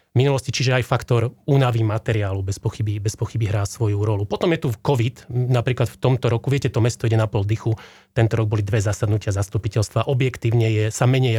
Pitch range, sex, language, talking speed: 115-135 Hz, male, Slovak, 200 wpm